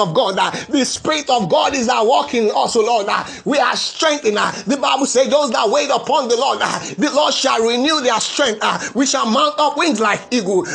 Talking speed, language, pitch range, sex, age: 210 wpm, English, 245-300 Hz, male, 30-49